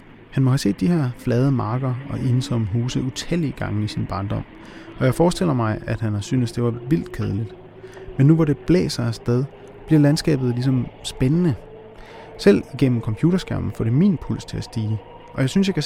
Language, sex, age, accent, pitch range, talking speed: Danish, male, 30-49, native, 115-145 Hz, 200 wpm